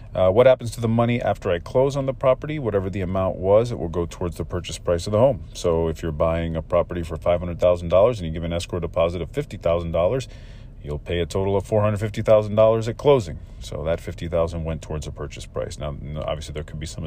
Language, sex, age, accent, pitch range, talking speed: English, male, 40-59, American, 85-110 Hz, 225 wpm